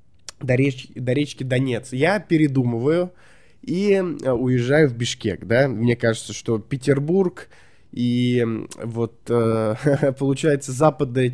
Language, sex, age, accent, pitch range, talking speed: Russian, male, 20-39, native, 120-155 Hz, 110 wpm